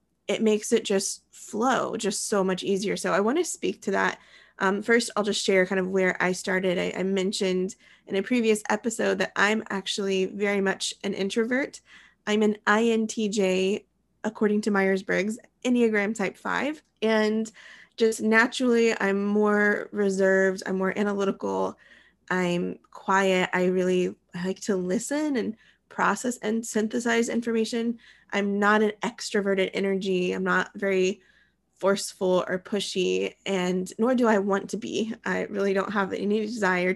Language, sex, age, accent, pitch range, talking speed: English, female, 20-39, American, 190-225 Hz, 155 wpm